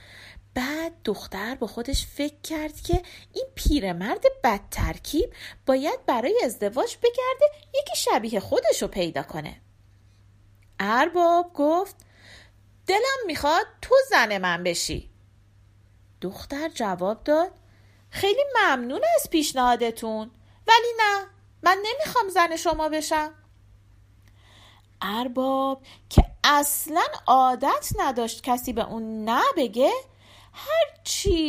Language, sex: Persian, female